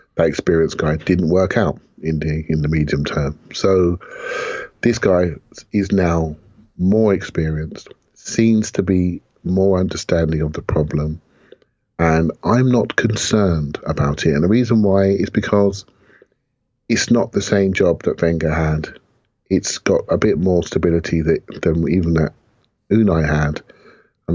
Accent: British